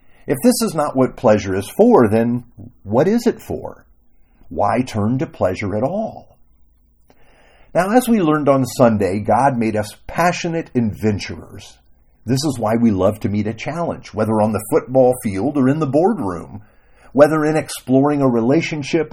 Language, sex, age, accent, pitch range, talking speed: English, male, 50-69, American, 100-150 Hz, 165 wpm